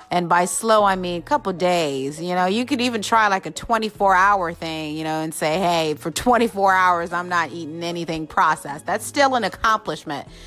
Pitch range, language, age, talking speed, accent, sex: 155-195 Hz, English, 30-49, 210 wpm, American, female